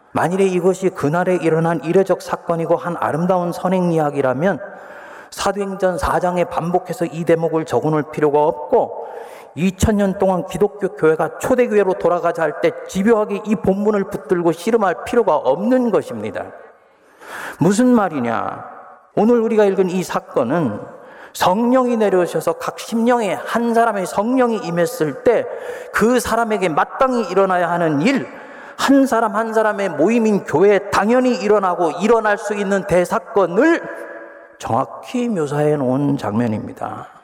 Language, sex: Korean, male